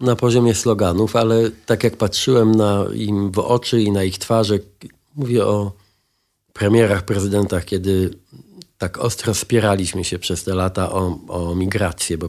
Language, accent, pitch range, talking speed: Polish, native, 90-110 Hz, 150 wpm